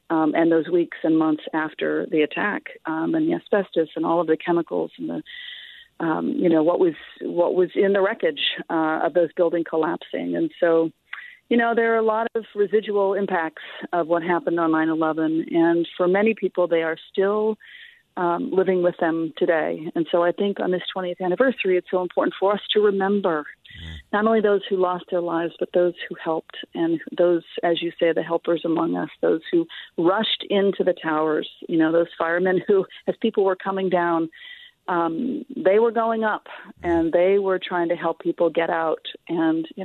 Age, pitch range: 40-59, 165-220 Hz